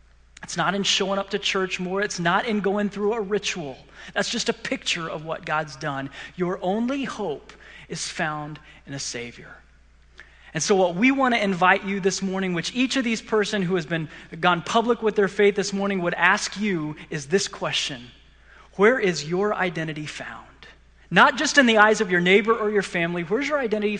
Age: 30-49